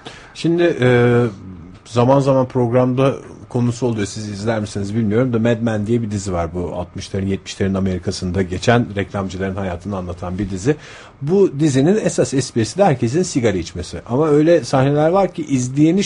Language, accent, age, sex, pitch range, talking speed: Turkish, native, 50-69, male, 100-135 Hz, 155 wpm